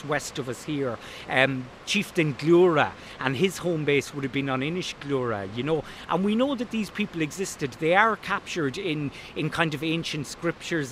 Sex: male